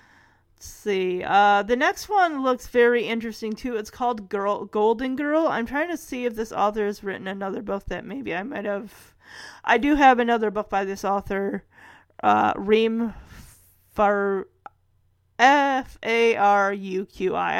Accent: American